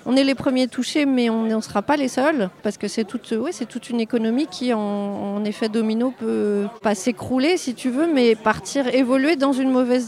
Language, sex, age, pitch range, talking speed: French, female, 40-59, 210-255 Hz, 225 wpm